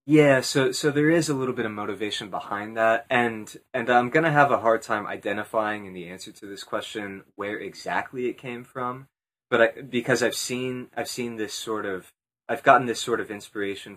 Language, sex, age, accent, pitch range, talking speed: English, male, 20-39, American, 105-130 Hz, 210 wpm